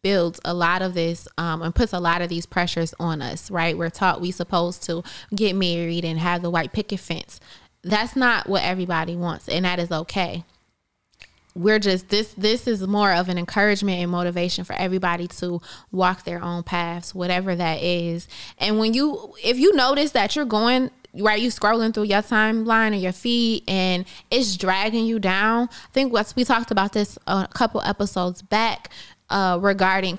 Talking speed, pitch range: 190 wpm, 175-225 Hz